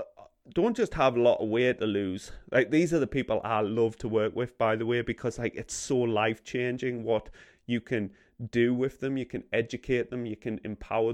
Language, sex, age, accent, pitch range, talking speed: English, male, 30-49, British, 115-145 Hz, 220 wpm